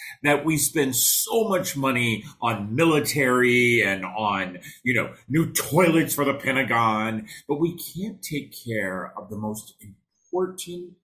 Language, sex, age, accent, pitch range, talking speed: English, male, 40-59, American, 105-160 Hz, 140 wpm